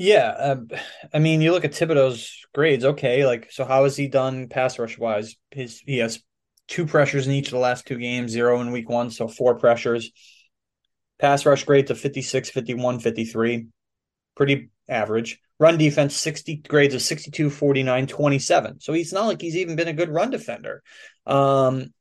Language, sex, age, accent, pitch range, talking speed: English, male, 20-39, American, 120-150 Hz, 180 wpm